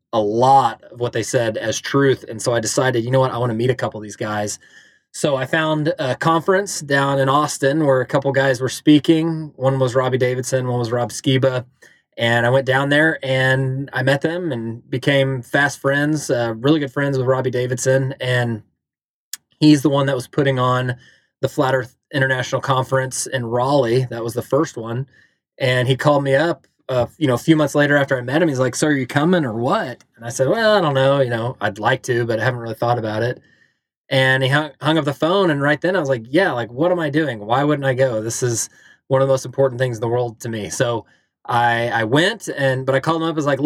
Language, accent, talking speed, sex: English, American, 245 wpm, male